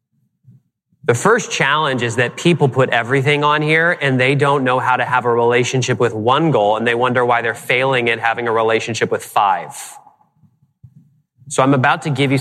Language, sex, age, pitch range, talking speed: English, male, 30-49, 130-160 Hz, 195 wpm